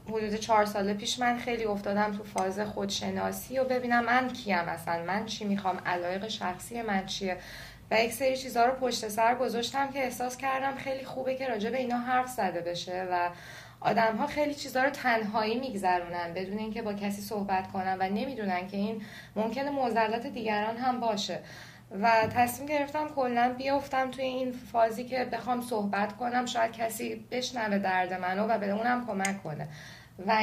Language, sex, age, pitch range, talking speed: Persian, female, 10-29, 190-240 Hz, 170 wpm